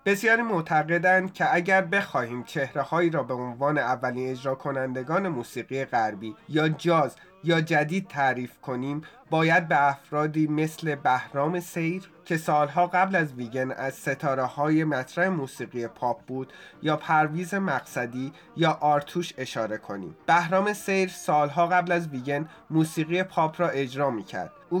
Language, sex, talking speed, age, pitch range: Persian, male, 140 wpm, 30-49, 135-175 Hz